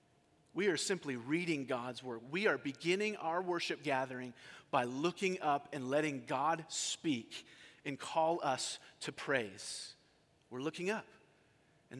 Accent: American